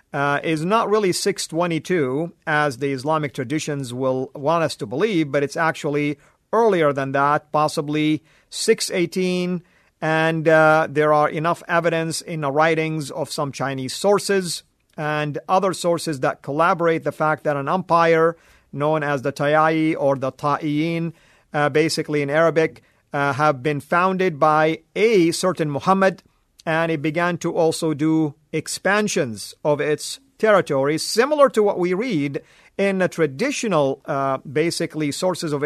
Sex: male